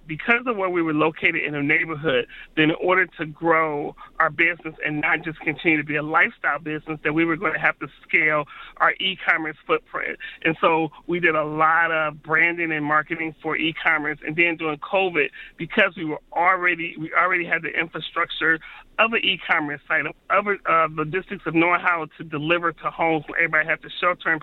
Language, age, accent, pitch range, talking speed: English, 30-49, American, 155-175 Hz, 205 wpm